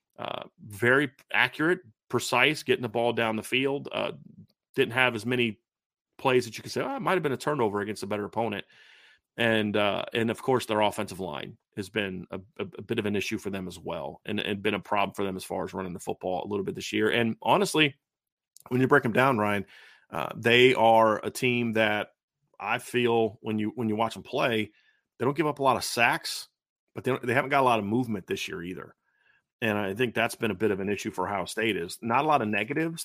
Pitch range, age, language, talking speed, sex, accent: 105-120 Hz, 30-49, English, 240 wpm, male, American